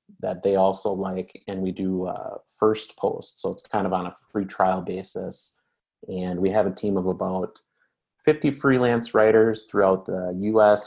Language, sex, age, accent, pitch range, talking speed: English, male, 30-49, American, 95-105 Hz, 175 wpm